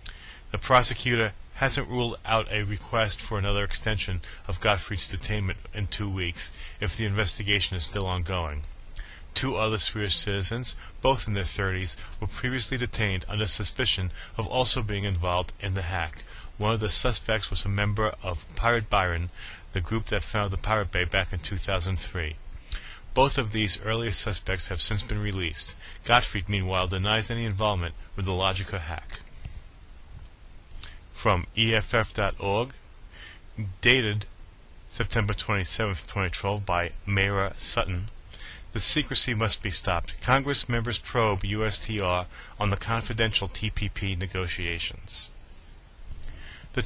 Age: 30-49